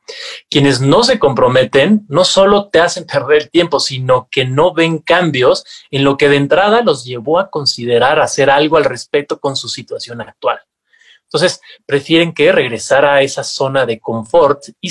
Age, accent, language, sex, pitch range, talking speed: 30-49, Mexican, Spanish, male, 135-185 Hz, 170 wpm